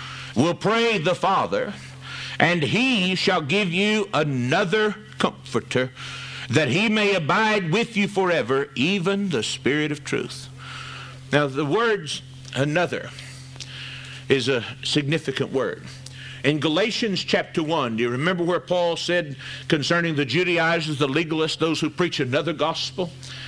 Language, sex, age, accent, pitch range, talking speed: English, male, 50-69, American, 145-210 Hz, 130 wpm